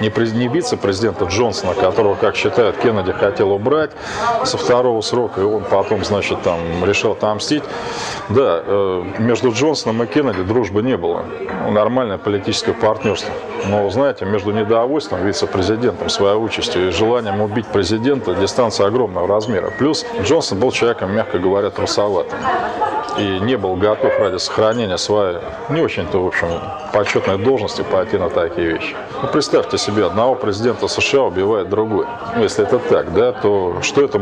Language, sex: Russian, male